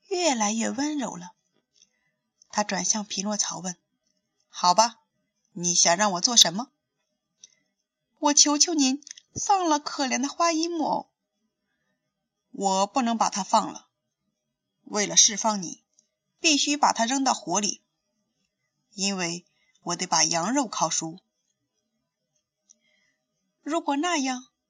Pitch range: 205-290 Hz